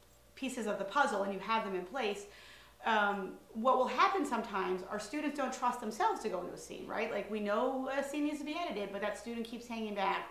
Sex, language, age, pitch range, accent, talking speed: female, English, 30-49, 190-250 Hz, American, 240 wpm